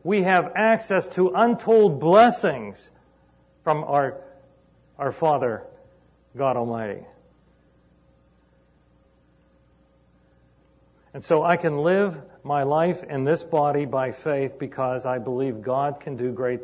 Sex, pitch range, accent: male, 125-165 Hz, American